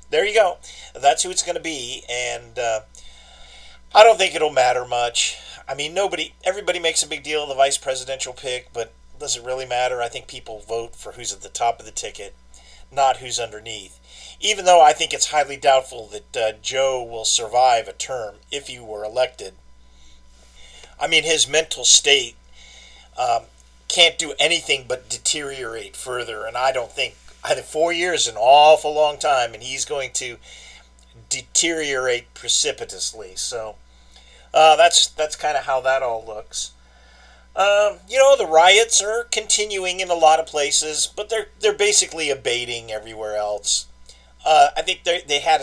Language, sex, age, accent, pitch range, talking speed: English, male, 40-59, American, 105-160 Hz, 175 wpm